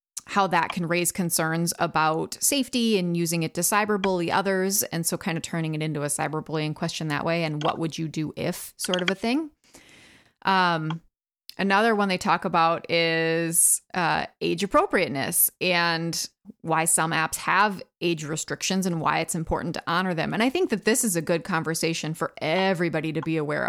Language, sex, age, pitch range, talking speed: English, female, 30-49, 160-200 Hz, 190 wpm